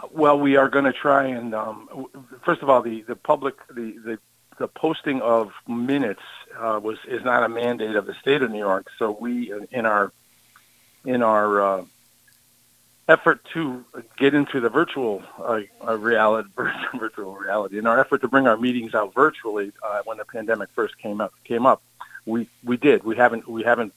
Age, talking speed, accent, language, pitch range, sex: 50-69, 190 wpm, American, English, 110-130 Hz, male